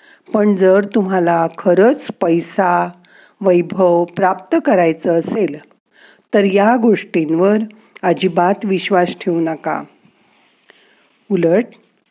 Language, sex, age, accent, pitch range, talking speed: Marathi, female, 50-69, native, 175-225 Hz, 85 wpm